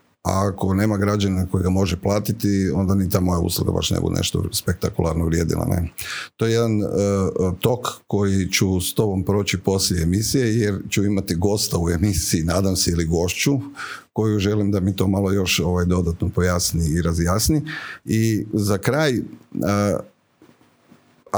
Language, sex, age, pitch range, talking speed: Croatian, male, 50-69, 90-110 Hz, 165 wpm